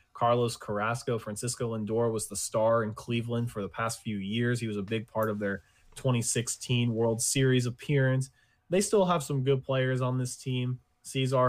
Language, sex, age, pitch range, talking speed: English, male, 20-39, 110-125 Hz, 185 wpm